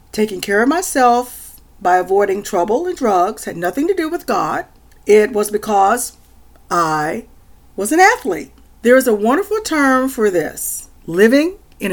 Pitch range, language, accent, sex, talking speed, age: 185-270 Hz, English, American, female, 155 wpm, 40-59